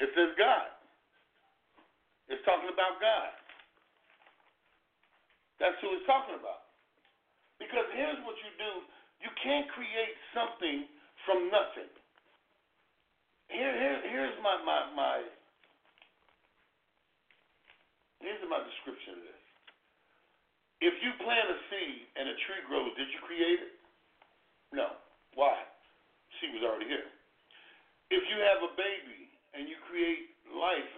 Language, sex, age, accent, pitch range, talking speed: English, male, 50-69, American, 175-290 Hz, 120 wpm